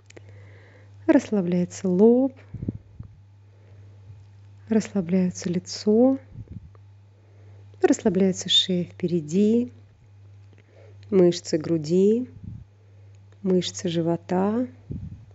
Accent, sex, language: native, female, Russian